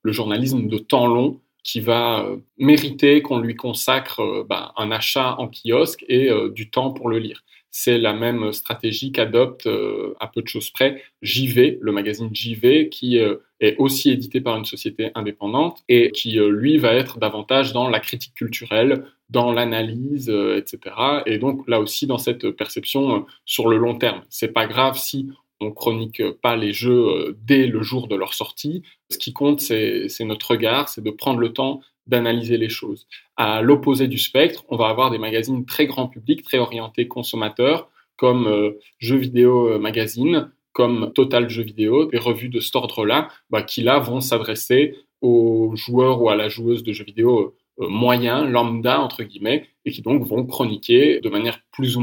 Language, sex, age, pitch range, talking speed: French, male, 20-39, 110-135 Hz, 185 wpm